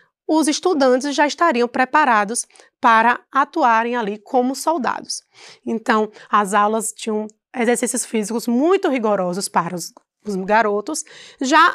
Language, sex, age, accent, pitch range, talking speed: Portuguese, female, 20-39, Brazilian, 230-315 Hz, 115 wpm